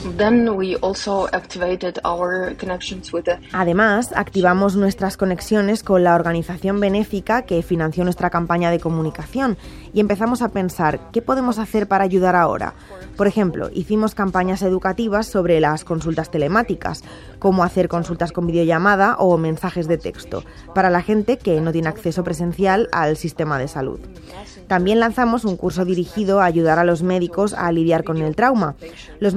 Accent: Spanish